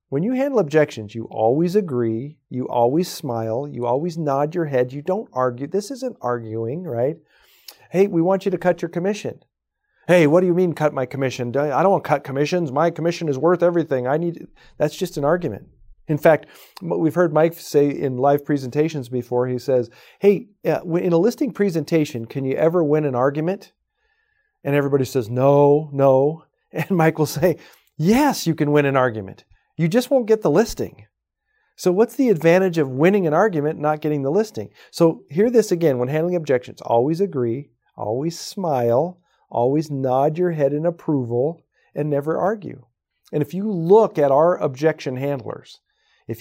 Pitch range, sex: 135-175 Hz, male